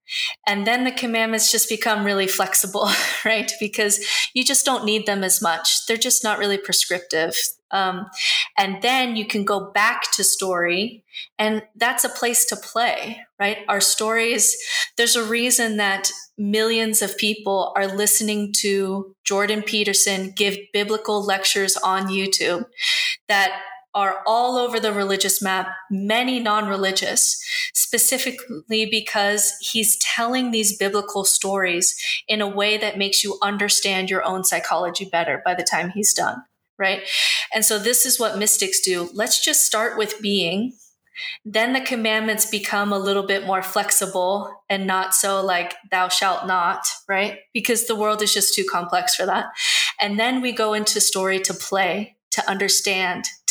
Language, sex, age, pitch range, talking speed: English, female, 20-39, 195-230 Hz, 155 wpm